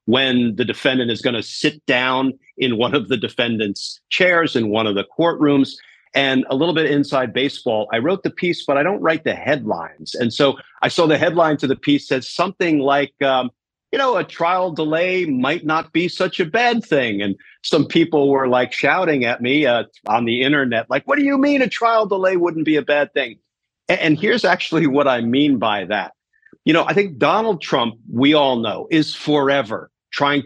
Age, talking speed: 50-69, 210 wpm